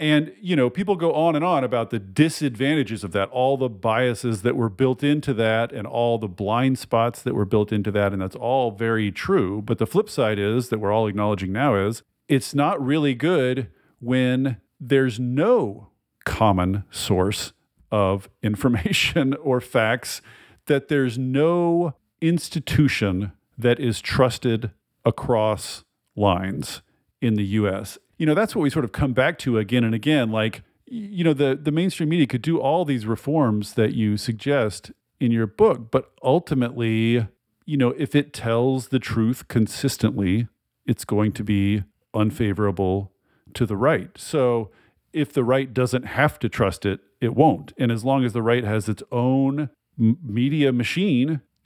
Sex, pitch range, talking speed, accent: male, 105-140 Hz, 165 wpm, American